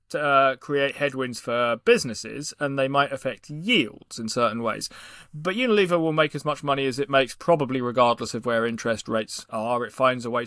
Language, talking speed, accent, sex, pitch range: English, 195 wpm, British, male, 120-150 Hz